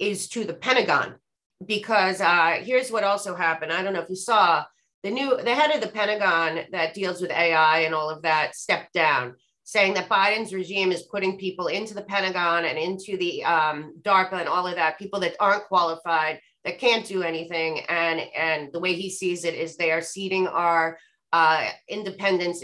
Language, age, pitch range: English, 30-49, 165-200 Hz